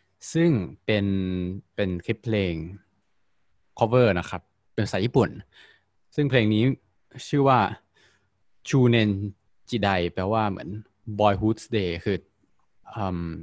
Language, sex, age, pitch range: Thai, male, 20-39, 95-120 Hz